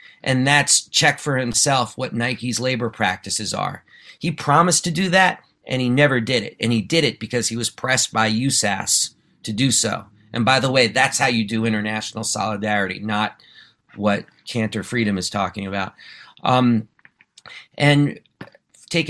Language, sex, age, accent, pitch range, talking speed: English, male, 40-59, American, 110-150 Hz, 165 wpm